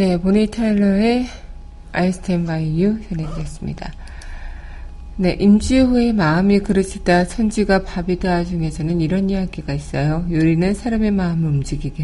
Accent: native